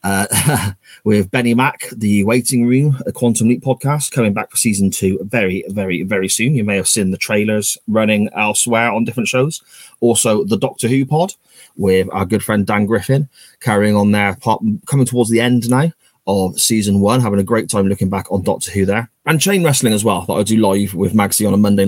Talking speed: 215 wpm